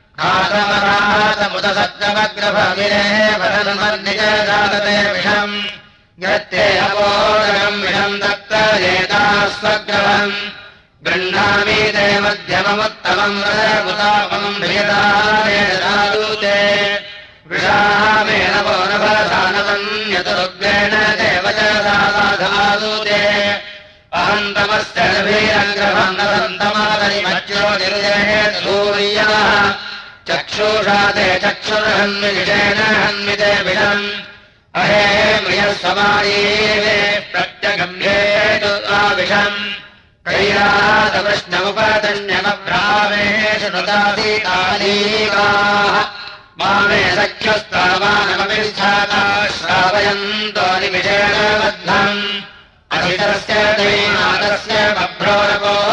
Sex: male